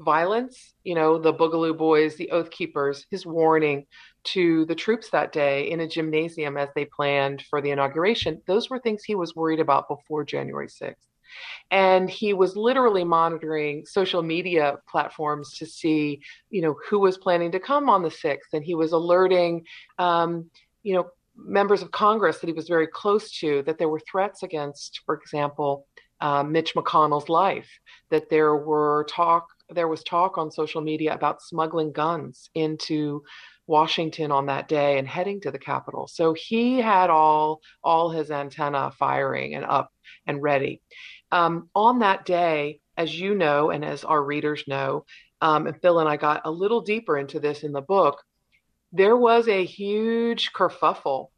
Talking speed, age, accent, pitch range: 175 wpm, 40-59, American, 150-185 Hz